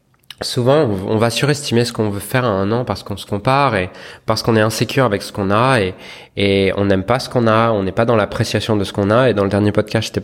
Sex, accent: male, French